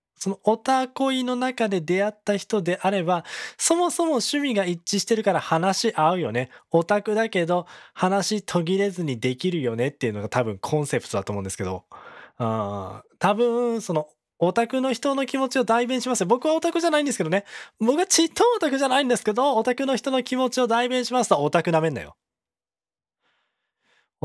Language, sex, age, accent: Japanese, male, 20-39, native